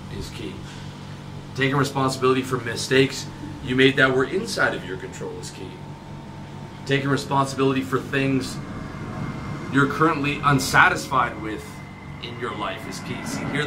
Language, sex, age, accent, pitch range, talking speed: English, male, 20-39, American, 130-150 Hz, 140 wpm